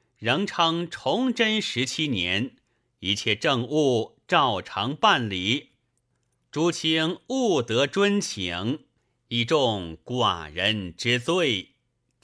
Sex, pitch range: male, 115-175 Hz